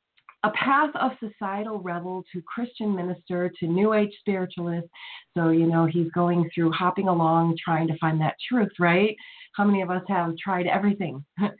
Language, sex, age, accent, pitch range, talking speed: English, female, 40-59, American, 165-215 Hz, 170 wpm